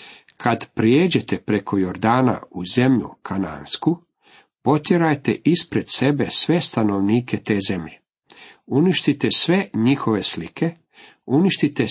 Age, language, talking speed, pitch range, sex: 50-69, Croatian, 95 wpm, 105-135 Hz, male